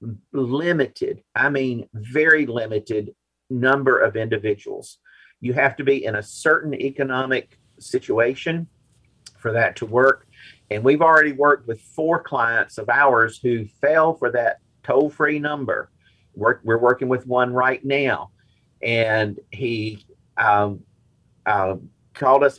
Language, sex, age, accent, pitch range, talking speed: English, male, 50-69, American, 110-145 Hz, 130 wpm